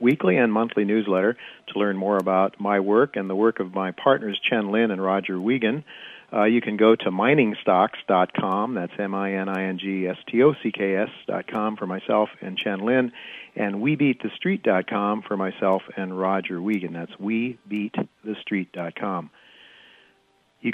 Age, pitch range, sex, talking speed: 50-69, 95-115 Hz, male, 125 wpm